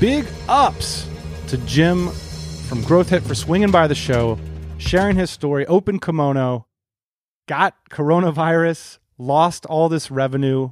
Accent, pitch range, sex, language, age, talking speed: American, 110-145 Hz, male, English, 30-49, 130 wpm